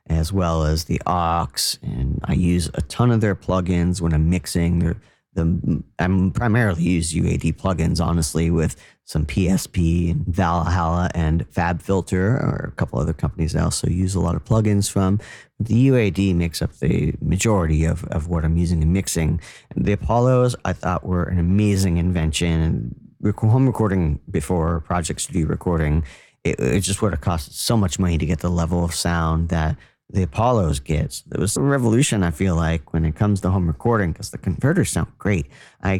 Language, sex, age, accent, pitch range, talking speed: English, male, 40-59, American, 85-100 Hz, 185 wpm